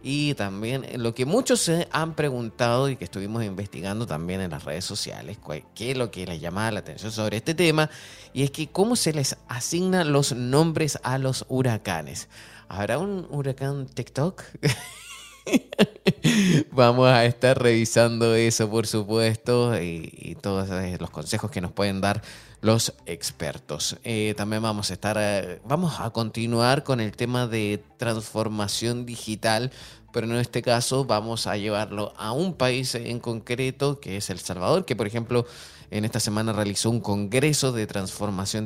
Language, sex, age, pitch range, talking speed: Spanish, male, 20-39, 105-130 Hz, 160 wpm